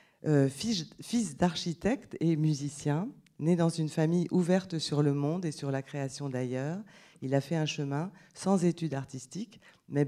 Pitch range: 135-165 Hz